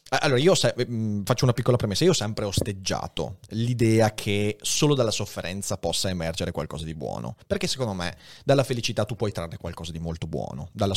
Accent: native